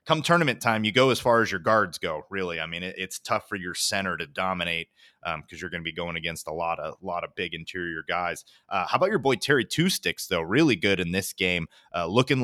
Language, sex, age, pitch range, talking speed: English, male, 30-49, 90-110 Hz, 260 wpm